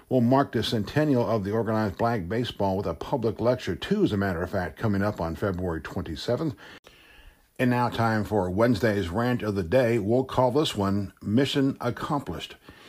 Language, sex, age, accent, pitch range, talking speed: English, male, 50-69, American, 100-130 Hz, 180 wpm